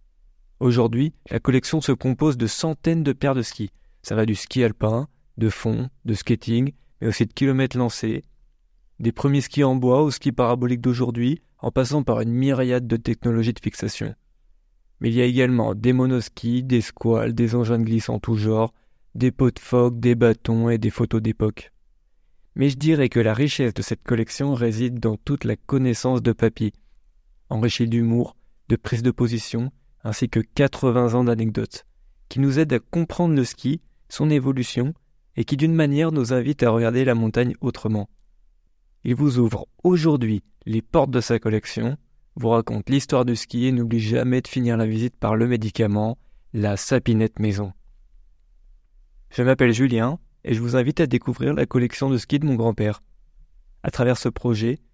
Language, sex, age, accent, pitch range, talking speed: French, male, 20-39, French, 110-130 Hz, 180 wpm